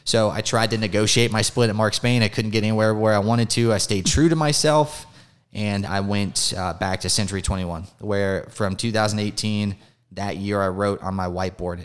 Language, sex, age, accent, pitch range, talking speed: English, male, 20-39, American, 95-110 Hz, 210 wpm